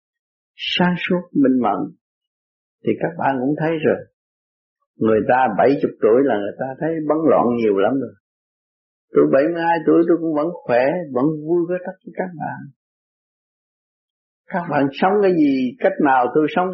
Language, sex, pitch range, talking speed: Vietnamese, male, 140-195 Hz, 175 wpm